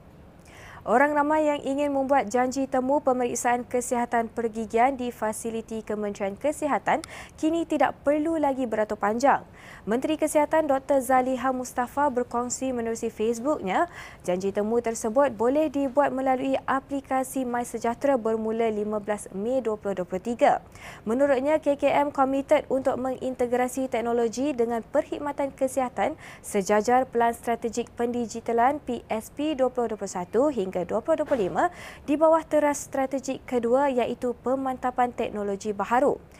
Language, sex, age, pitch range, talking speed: Malay, female, 20-39, 230-275 Hz, 110 wpm